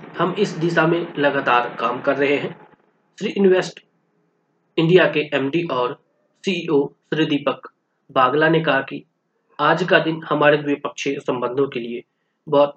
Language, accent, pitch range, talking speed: Hindi, native, 135-165 Hz, 145 wpm